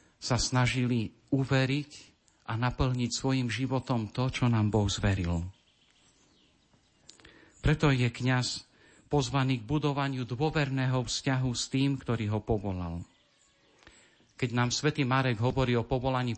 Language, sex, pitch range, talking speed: Slovak, male, 115-140 Hz, 115 wpm